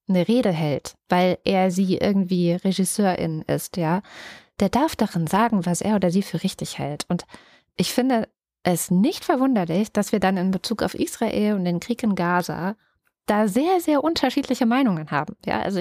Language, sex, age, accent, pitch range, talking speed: German, female, 20-39, German, 185-230 Hz, 180 wpm